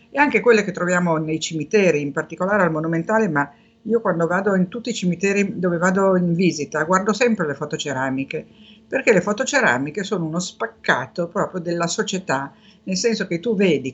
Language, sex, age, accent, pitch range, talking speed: Italian, female, 50-69, native, 170-210 Hz, 175 wpm